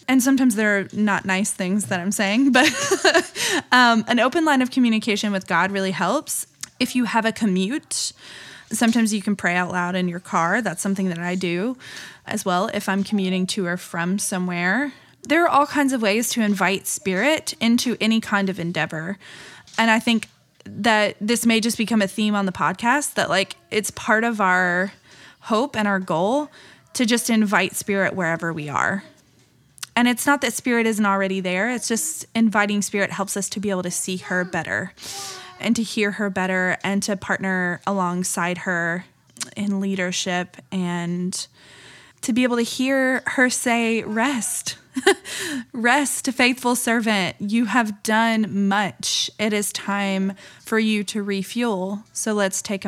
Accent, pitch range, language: American, 185-235 Hz, English